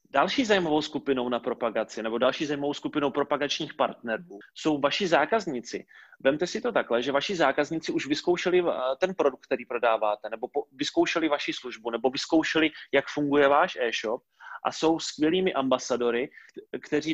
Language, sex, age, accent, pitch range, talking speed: Czech, male, 30-49, native, 125-155 Hz, 150 wpm